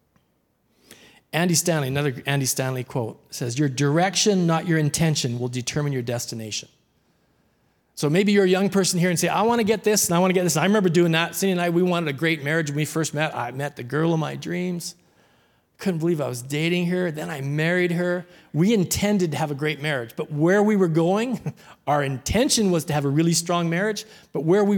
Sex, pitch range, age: male, 140-180 Hz, 40-59